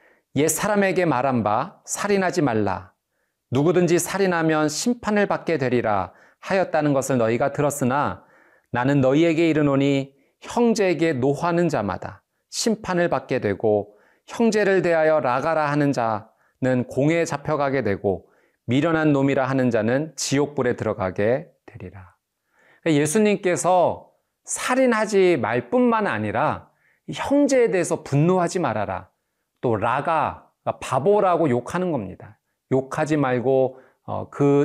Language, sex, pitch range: Korean, male, 120-180 Hz